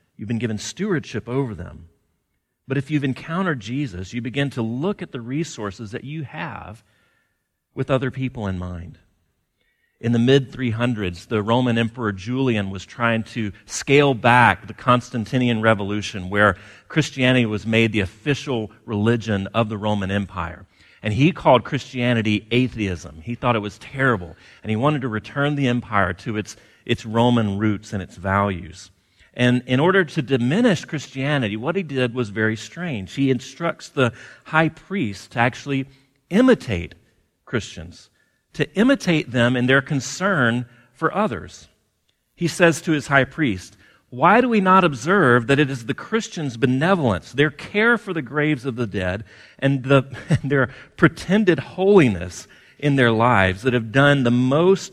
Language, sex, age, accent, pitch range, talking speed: English, male, 40-59, American, 105-140 Hz, 155 wpm